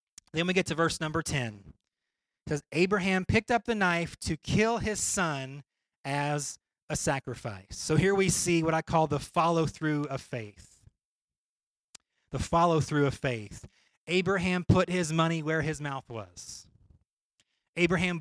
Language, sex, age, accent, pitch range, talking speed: English, male, 30-49, American, 160-245 Hz, 150 wpm